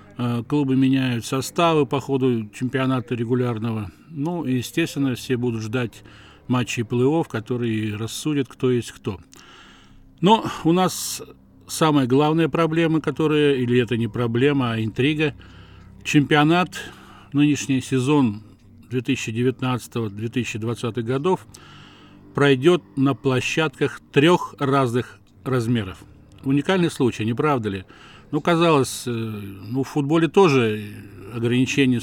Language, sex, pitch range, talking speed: Russian, male, 110-140 Hz, 105 wpm